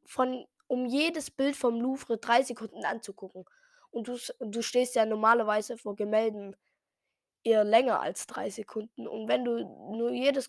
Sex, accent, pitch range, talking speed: female, German, 220-280 Hz, 150 wpm